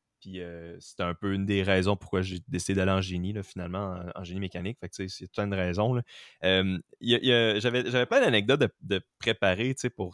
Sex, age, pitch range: male, 20-39, 95-125 Hz